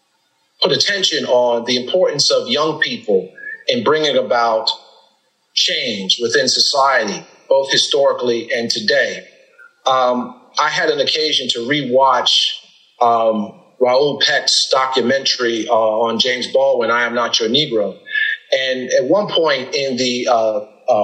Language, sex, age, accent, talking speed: English, male, 40-59, American, 130 wpm